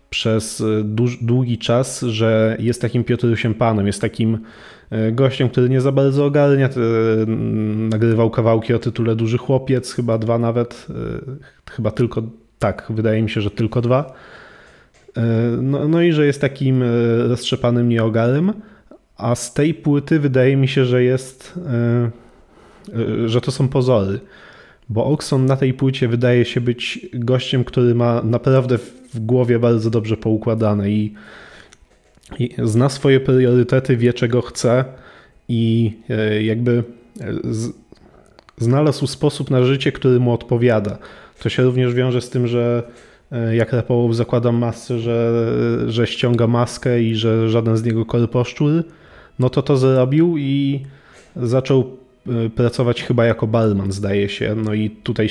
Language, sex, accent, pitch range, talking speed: Polish, male, native, 115-130 Hz, 135 wpm